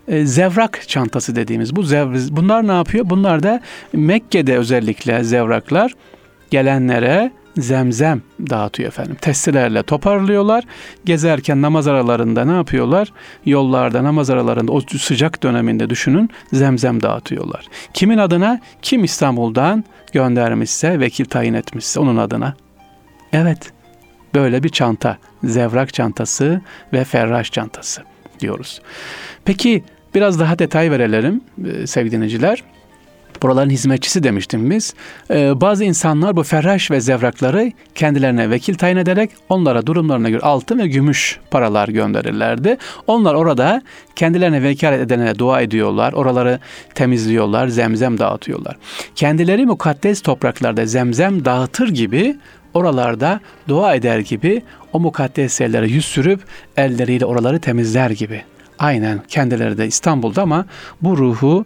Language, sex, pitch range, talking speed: Turkish, male, 120-180 Hz, 115 wpm